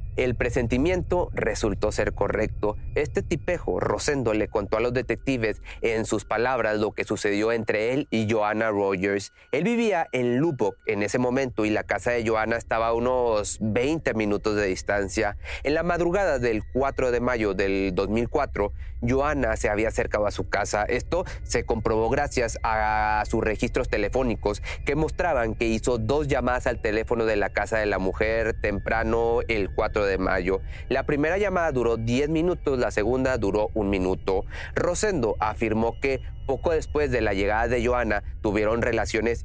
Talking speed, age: 170 wpm, 30-49